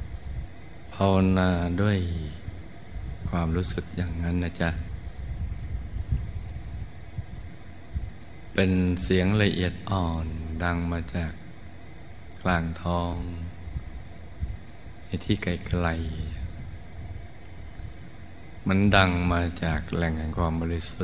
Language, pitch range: Thai, 85-95 Hz